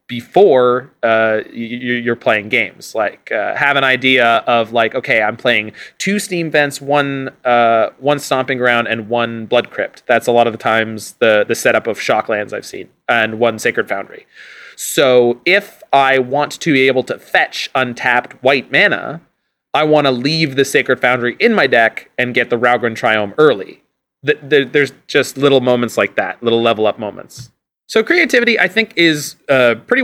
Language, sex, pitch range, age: English, male, 120-150 Hz, 30-49